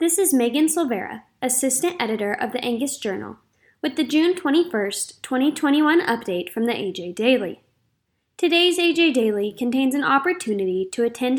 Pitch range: 210-310 Hz